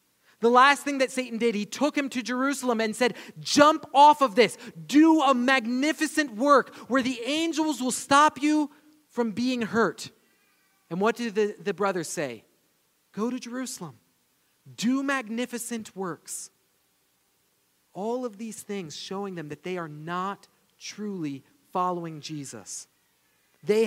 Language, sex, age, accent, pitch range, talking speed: English, male, 40-59, American, 145-230 Hz, 145 wpm